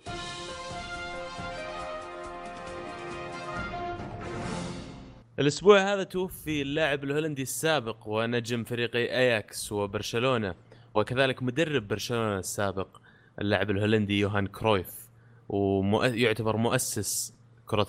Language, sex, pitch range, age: Arabic, male, 95-115 Hz, 20-39